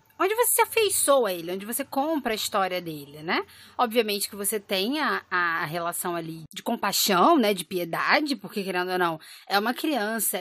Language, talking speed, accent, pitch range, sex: Portuguese, 190 wpm, Brazilian, 180-235 Hz, female